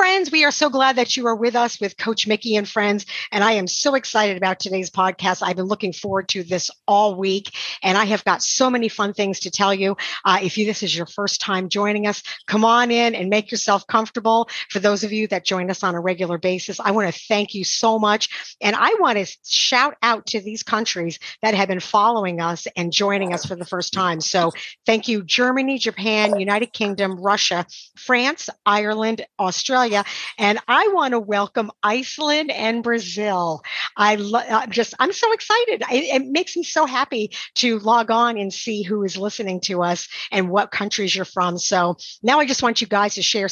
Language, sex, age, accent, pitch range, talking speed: English, female, 50-69, American, 190-240 Hz, 210 wpm